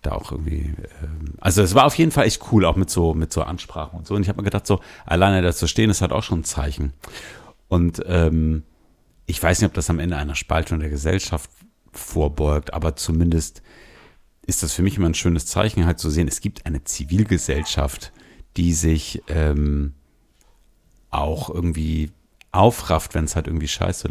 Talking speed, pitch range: 190 wpm, 80-100 Hz